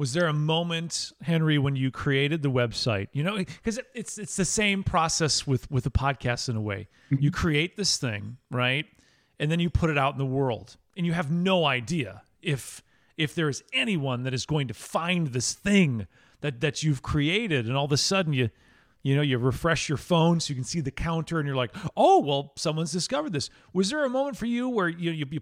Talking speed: 225 wpm